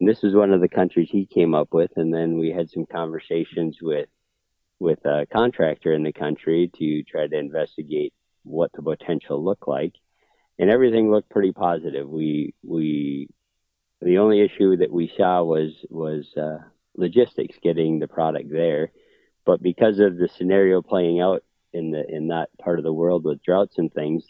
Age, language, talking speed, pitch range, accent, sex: 50-69, English, 180 wpm, 75-90 Hz, American, male